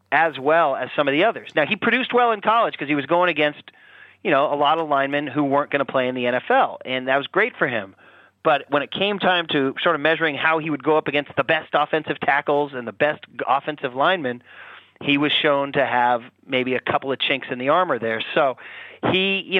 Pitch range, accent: 140-195 Hz, American